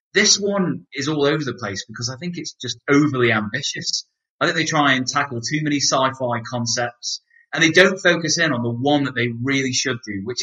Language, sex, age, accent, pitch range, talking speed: English, male, 30-49, British, 115-165 Hz, 220 wpm